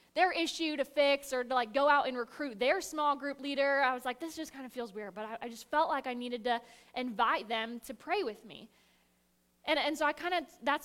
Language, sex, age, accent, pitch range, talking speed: English, female, 10-29, American, 200-295 Hz, 255 wpm